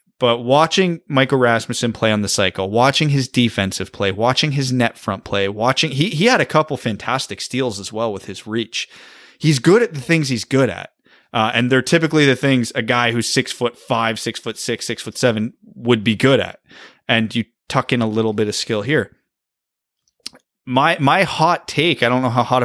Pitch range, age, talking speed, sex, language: 110-135 Hz, 30-49, 210 wpm, male, English